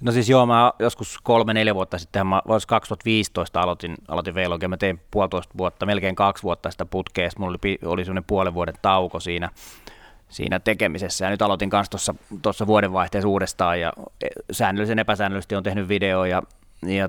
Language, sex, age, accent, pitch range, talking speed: Finnish, male, 30-49, native, 90-100 Hz, 160 wpm